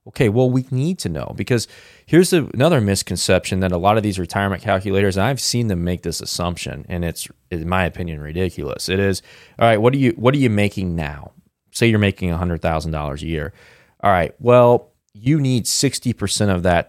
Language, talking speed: English, 190 wpm